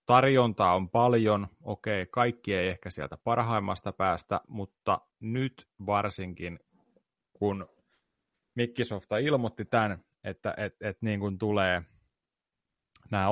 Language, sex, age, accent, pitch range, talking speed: Finnish, male, 30-49, native, 95-120 Hz, 85 wpm